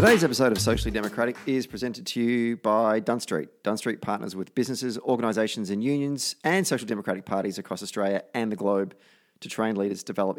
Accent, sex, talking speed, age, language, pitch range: Australian, male, 180 wpm, 30-49, English, 100-120 Hz